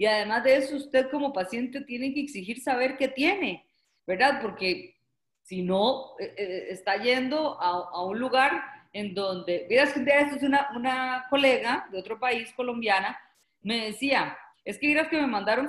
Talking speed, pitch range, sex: 175 wpm, 195-270 Hz, female